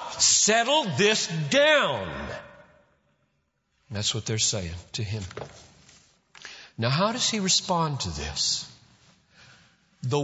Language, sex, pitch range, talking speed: English, male, 110-180 Hz, 100 wpm